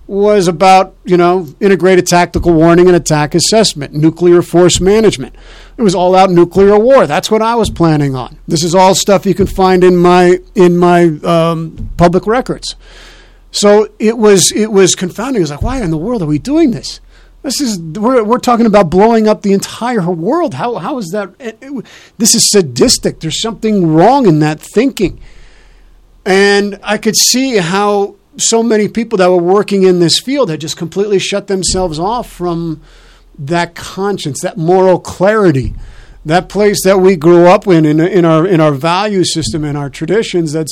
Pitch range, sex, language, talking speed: 165-205 Hz, male, English, 185 wpm